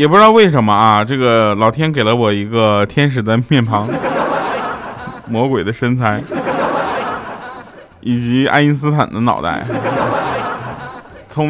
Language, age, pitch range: Chinese, 20-39, 105-140 Hz